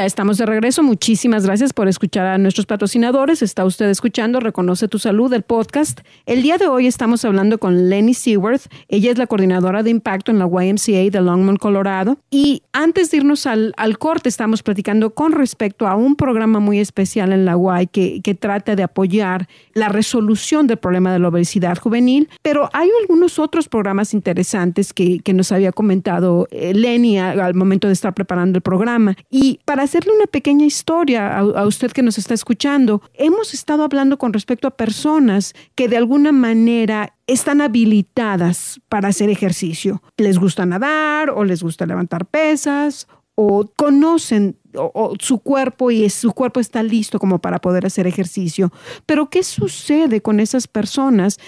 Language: English